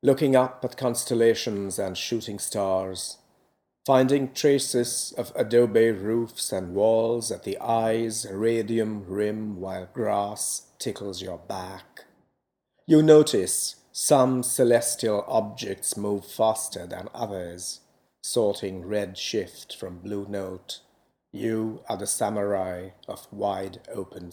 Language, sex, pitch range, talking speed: English, male, 95-115 Hz, 115 wpm